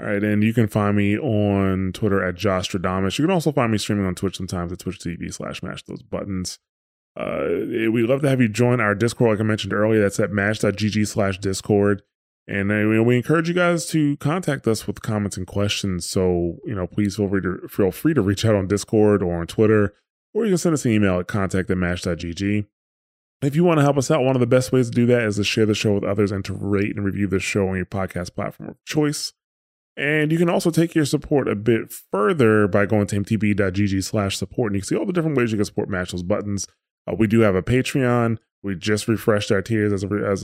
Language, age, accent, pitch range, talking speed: English, 20-39, American, 95-115 Hz, 245 wpm